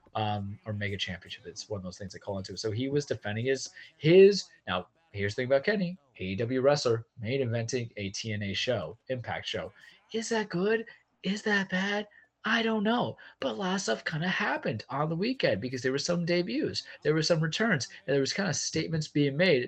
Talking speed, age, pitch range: 215 wpm, 20-39, 100-135 Hz